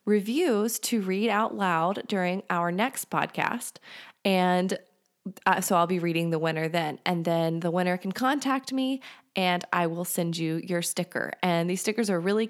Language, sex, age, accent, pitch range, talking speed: English, female, 20-39, American, 175-210 Hz, 180 wpm